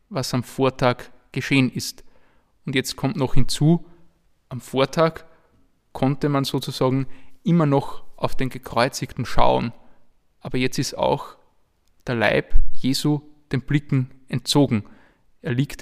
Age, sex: 20-39, male